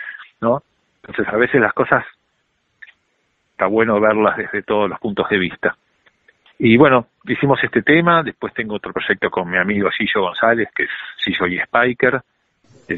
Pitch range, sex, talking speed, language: 95-110 Hz, male, 155 wpm, Spanish